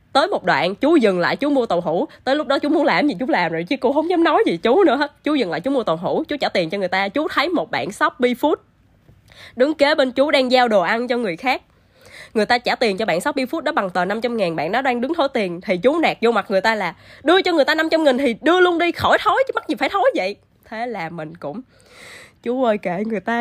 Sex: female